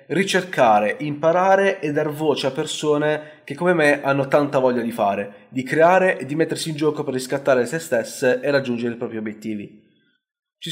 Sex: male